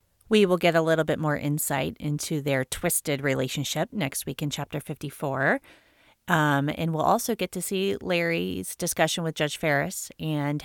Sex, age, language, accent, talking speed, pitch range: female, 30-49, English, American, 170 wpm, 150-200 Hz